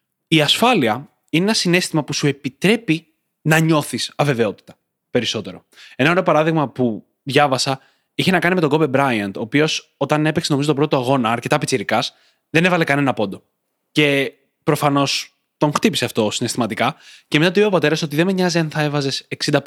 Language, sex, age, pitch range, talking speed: Greek, male, 20-39, 130-165 Hz, 170 wpm